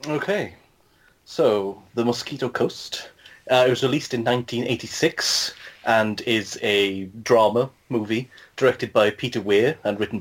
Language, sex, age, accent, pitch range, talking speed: English, male, 30-49, British, 100-120 Hz, 130 wpm